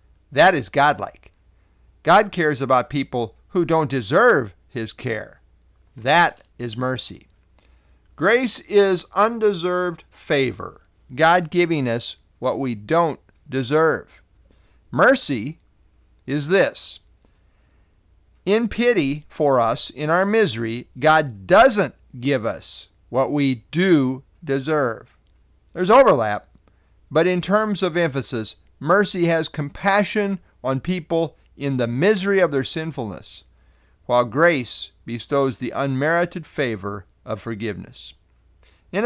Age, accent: 50-69, American